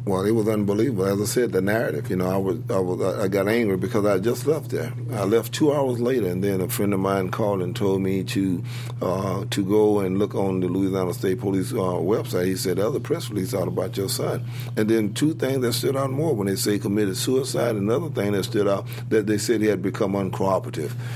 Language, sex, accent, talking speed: English, male, American, 250 wpm